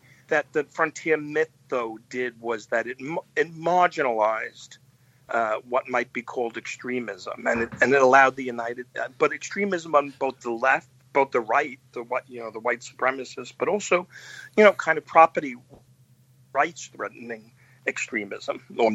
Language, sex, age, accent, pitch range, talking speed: English, male, 50-69, American, 120-140 Hz, 165 wpm